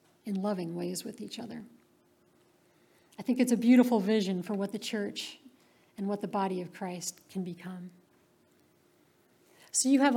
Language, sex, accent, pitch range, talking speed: English, female, American, 195-245 Hz, 160 wpm